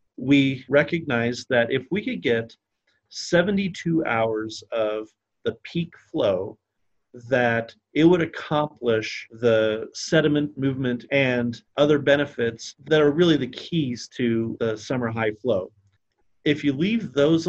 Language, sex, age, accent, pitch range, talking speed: English, male, 40-59, American, 115-140 Hz, 125 wpm